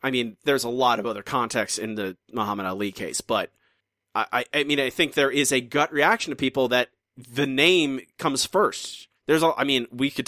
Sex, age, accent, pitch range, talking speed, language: male, 30-49, American, 125-160 Hz, 215 wpm, English